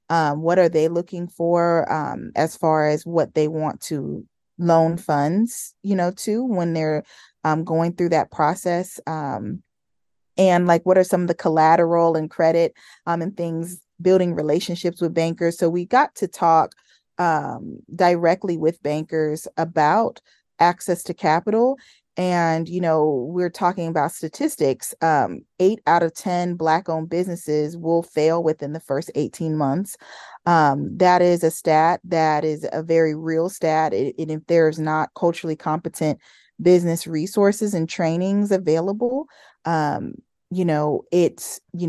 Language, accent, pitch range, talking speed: English, American, 155-180 Hz, 150 wpm